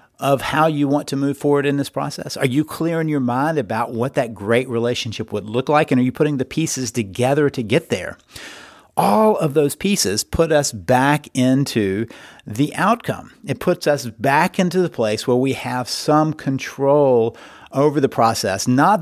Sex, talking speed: male, 190 wpm